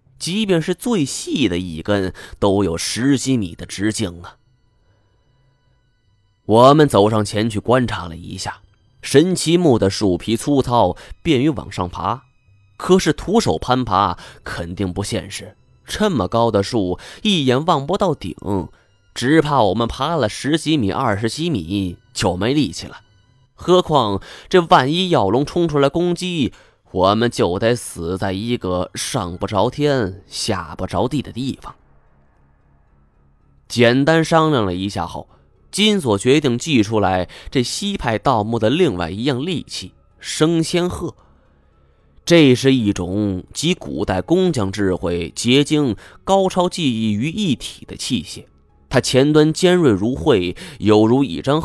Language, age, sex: Chinese, 20-39, male